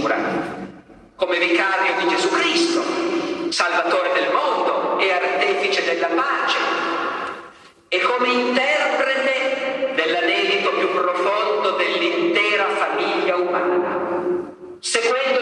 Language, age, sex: Italian, 50-69, male